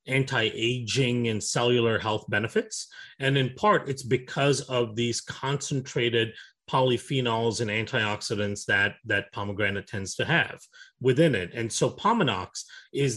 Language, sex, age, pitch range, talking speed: English, male, 30-49, 110-135 Hz, 130 wpm